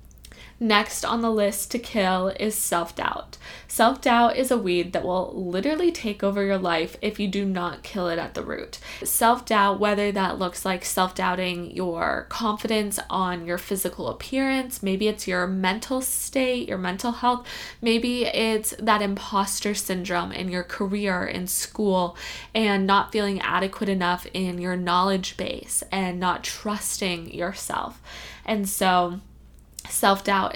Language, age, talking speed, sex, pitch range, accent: English, 10-29, 145 wpm, female, 180-215 Hz, American